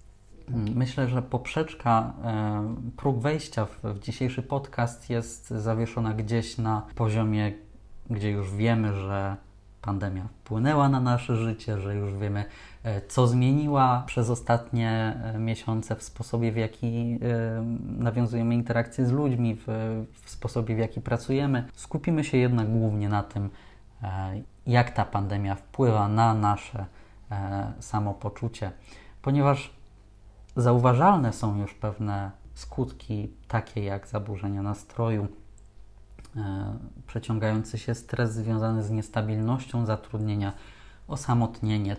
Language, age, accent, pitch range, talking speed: Polish, 20-39, native, 105-125 Hz, 105 wpm